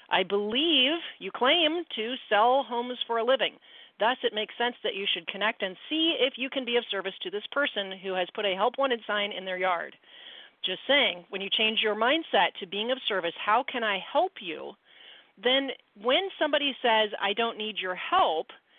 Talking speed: 205 wpm